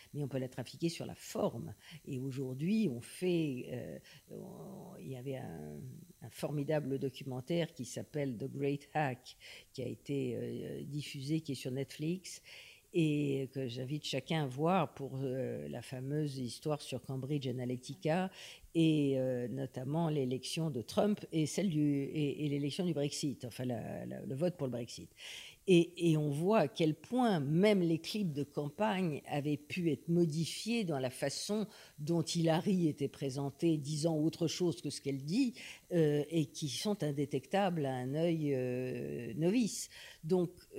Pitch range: 135-170 Hz